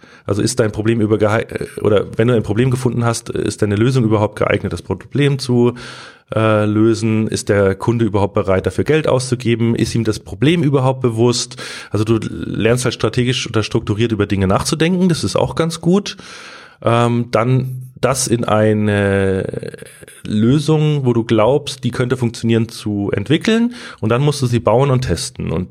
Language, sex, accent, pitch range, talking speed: German, male, German, 105-130 Hz, 175 wpm